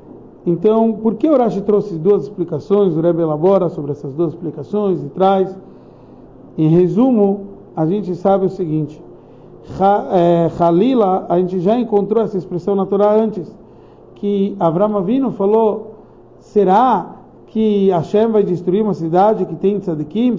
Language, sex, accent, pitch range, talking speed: Portuguese, male, Brazilian, 180-220 Hz, 145 wpm